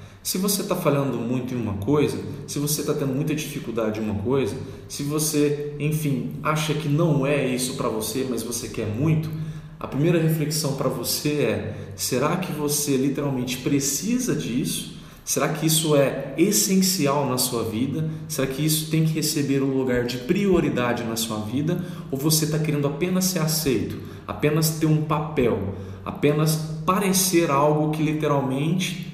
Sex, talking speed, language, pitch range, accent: male, 165 wpm, Portuguese, 120-155 Hz, Brazilian